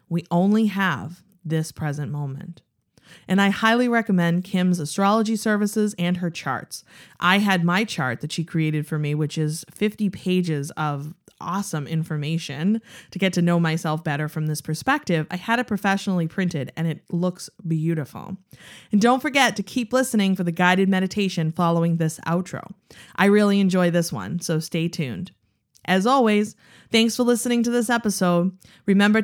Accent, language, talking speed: American, English, 165 wpm